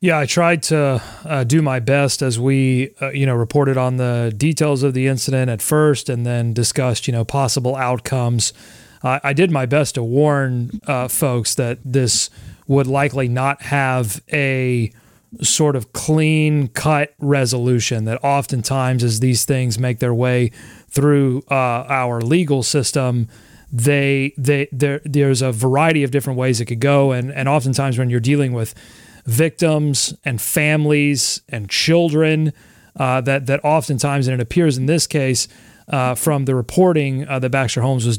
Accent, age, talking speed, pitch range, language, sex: American, 30-49, 165 wpm, 125-145 Hz, English, male